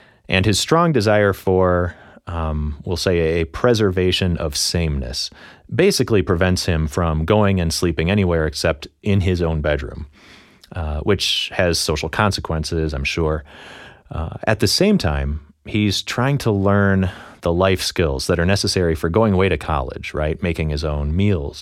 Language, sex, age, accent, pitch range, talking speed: English, male, 30-49, American, 80-105 Hz, 160 wpm